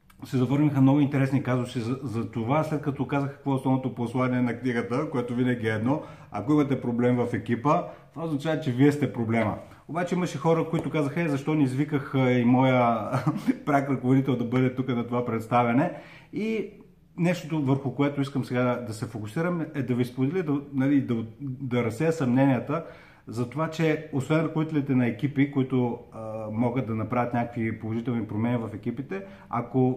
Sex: male